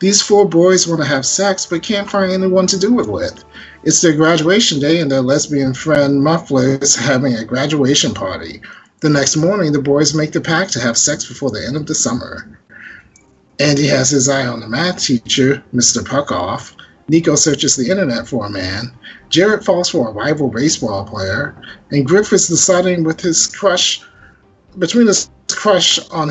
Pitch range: 125-170 Hz